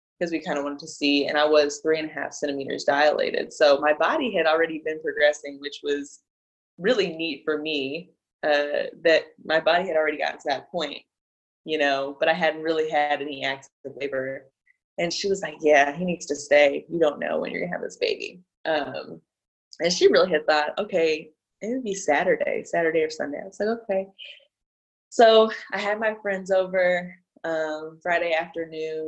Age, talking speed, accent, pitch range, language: 20-39, 195 wpm, American, 145-170 Hz, English